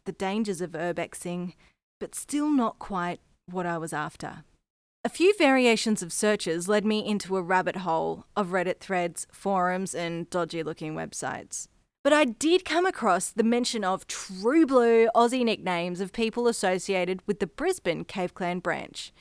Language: English